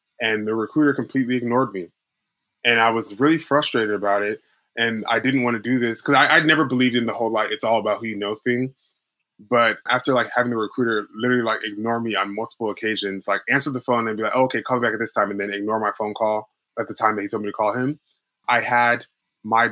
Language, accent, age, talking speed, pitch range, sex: English, American, 20-39, 250 wpm, 110-125 Hz, male